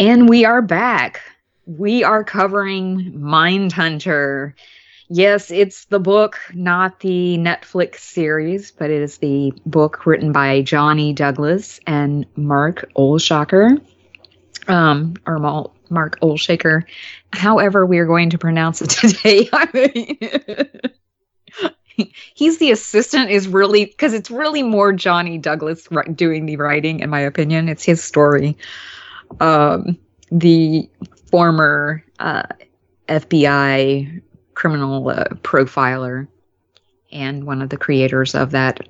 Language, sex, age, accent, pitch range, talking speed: English, female, 20-39, American, 145-195 Hz, 115 wpm